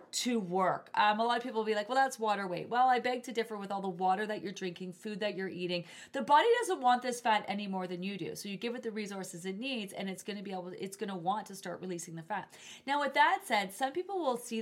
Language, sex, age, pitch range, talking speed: English, female, 30-49, 190-240 Hz, 295 wpm